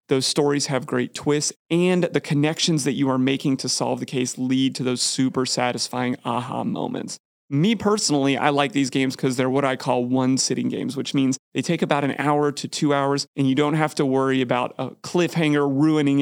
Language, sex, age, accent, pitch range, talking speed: English, male, 30-49, American, 130-155 Hz, 210 wpm